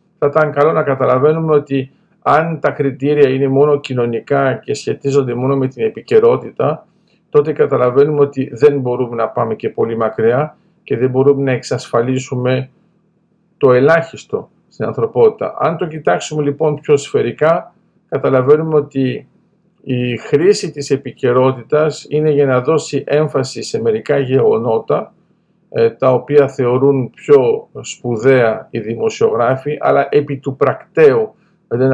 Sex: male